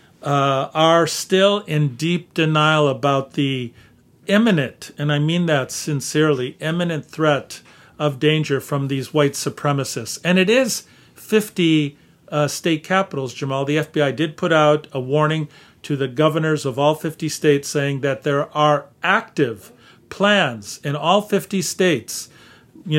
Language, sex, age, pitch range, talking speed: English, male, 50-69, 140-175 Hz, 145 wpm